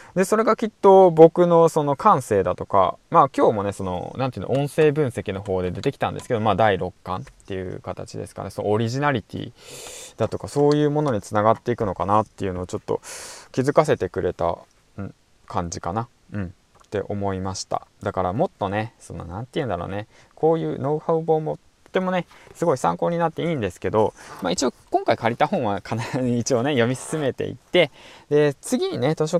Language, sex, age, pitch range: Japanese, male, 20-39, 95-145 Hz